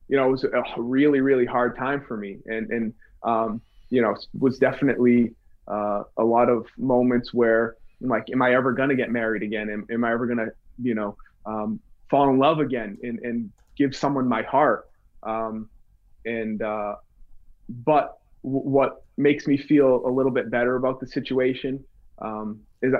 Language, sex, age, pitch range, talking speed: English, male, 20-39, 115-135 Hz, 190 wpm